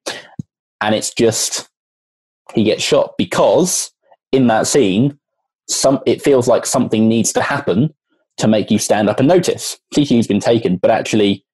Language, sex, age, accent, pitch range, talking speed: English, male, 20-39, British, 105-130 Hz, 155 wpm